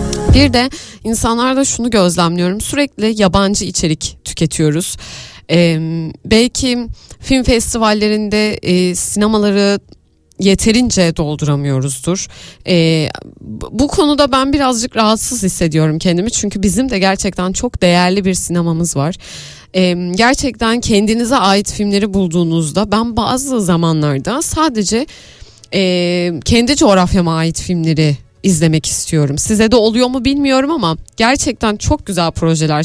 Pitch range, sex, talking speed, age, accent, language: 170-225 Hz, female, 110 wpm, 30-49, native, Turkish